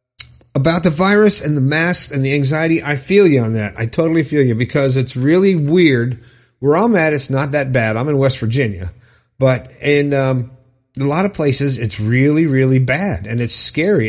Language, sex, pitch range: English, male, 120-155 Hz